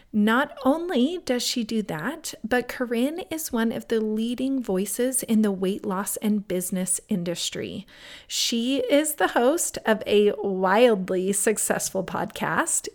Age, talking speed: 30-49, 140 wpm